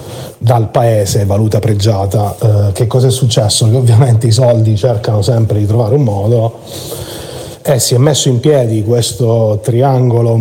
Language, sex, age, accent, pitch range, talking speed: Italian, male, 40-59, native, 110-125 Hz, 160 wpm